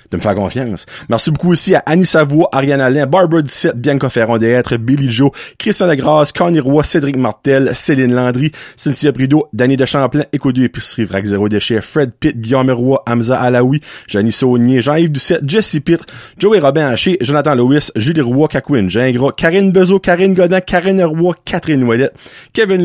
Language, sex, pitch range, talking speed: French, male, 125-175 Hz, 175 wpm